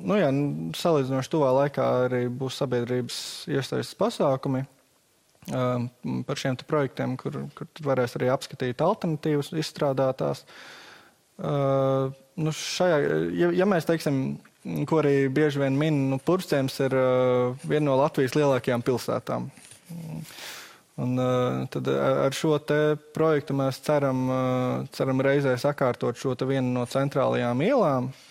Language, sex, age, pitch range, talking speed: English, male, 20-39, 125-145 Hz, 115 wpm